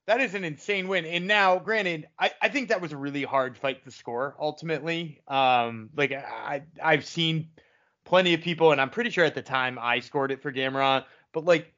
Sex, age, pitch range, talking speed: male, 20-39, 140-195 Hz, 215 wpm